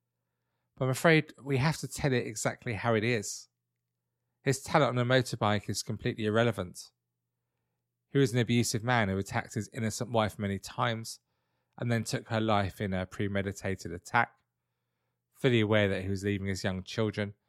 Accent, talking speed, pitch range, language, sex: British, 170 wpm, 100-125 Hz, English, male